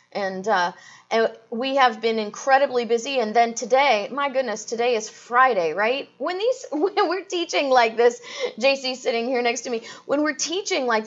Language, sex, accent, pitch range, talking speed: English, female, American, 210-265 Hz, 185 wpm